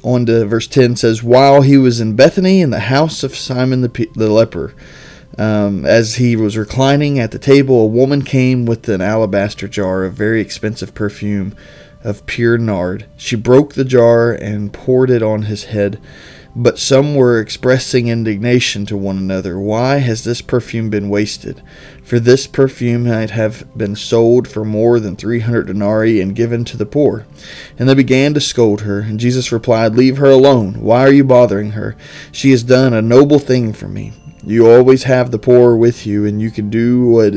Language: English